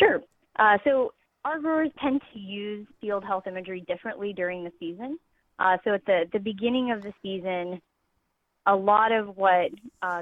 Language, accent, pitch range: English, American, 180-220 Hz